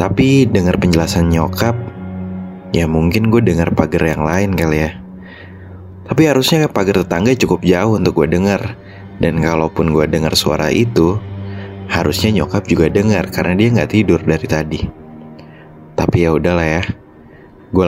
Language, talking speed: Indonesian, 145 wpm